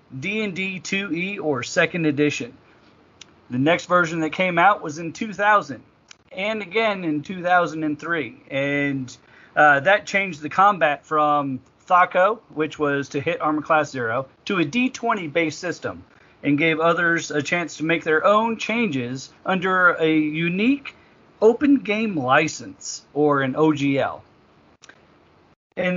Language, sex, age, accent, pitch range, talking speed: English, male, 40-59, American, 140-185 Hz, 130 wpm